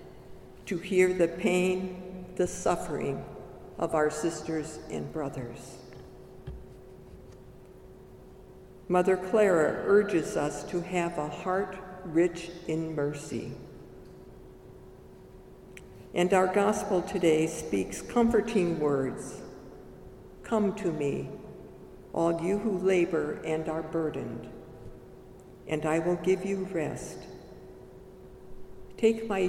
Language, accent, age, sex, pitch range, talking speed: English, American, 60-79, female, 155-185 Hz, 95 wpm